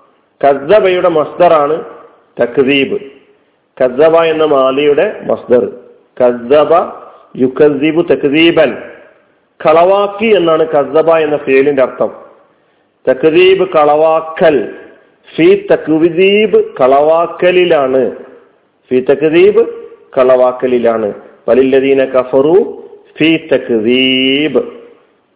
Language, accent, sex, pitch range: Malayalam, native, male, 140-210 Hz